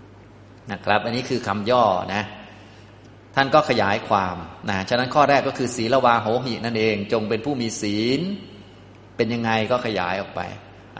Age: 20-39